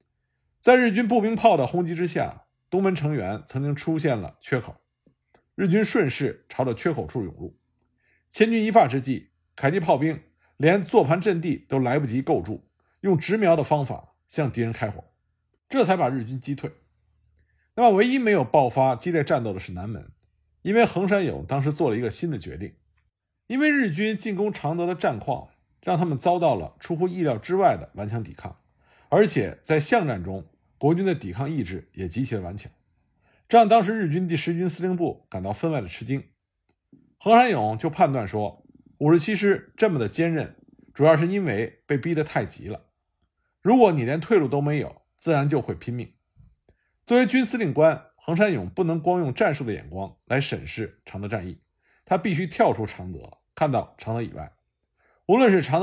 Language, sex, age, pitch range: Chinese, male, 50-69, 115-180 Hz